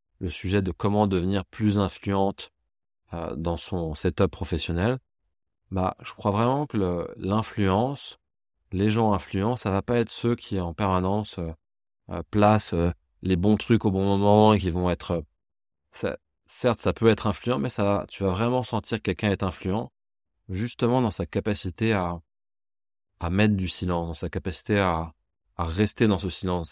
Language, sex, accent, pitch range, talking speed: French, male, French, 85-105 Hz, 175 wpm